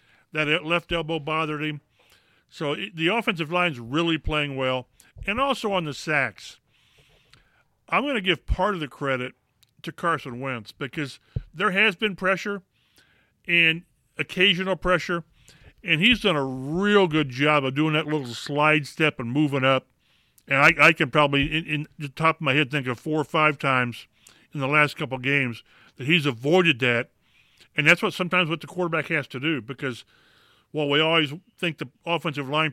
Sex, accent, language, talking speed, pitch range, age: male, American, English, 180 wpm, 135-165 Hz, 50-69